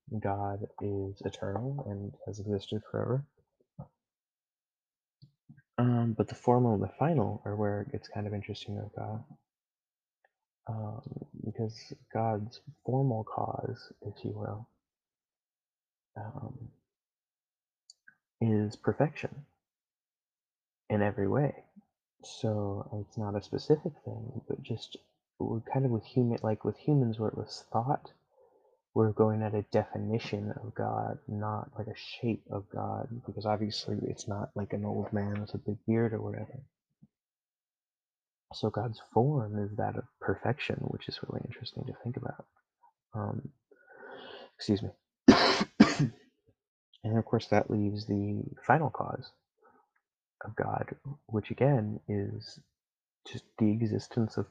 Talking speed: 130 wpm